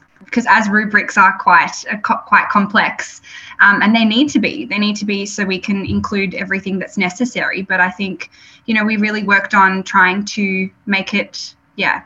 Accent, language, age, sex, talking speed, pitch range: Australian, English, 10-29, female, 190 wpm, 190-220 Hz